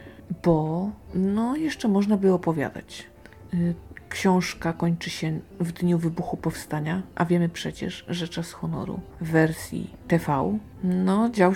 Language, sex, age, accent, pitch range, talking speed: Polish, female, 50-69, native, 170-195 Hz, 125 wpm